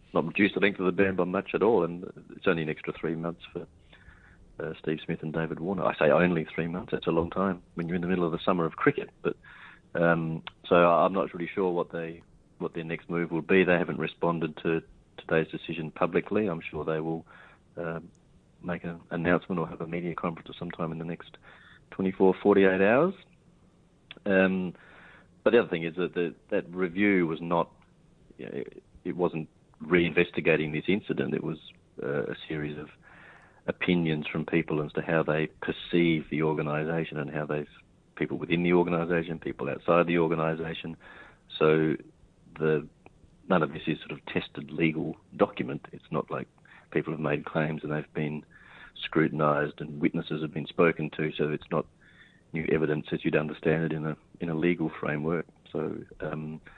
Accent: Australian